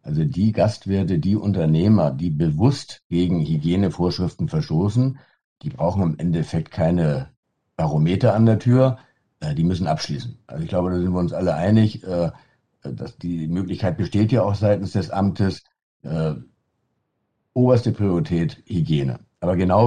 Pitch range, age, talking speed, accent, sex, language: 90-110 Hz, 60-79, 135 wpm, German, male, German